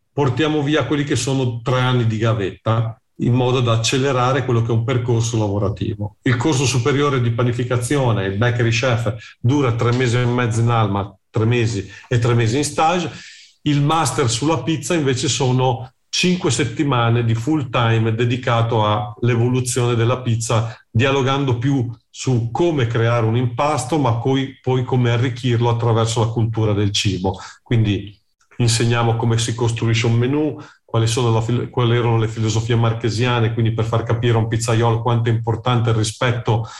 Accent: native